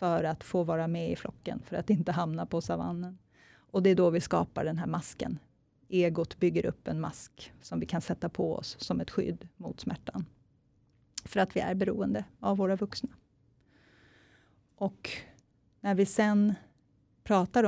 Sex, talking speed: female, 175 wpm